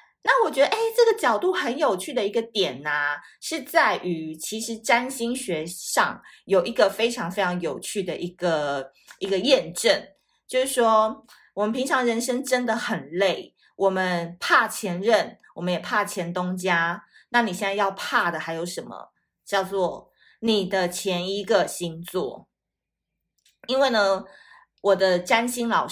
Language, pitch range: Chinese, 180-235 Hz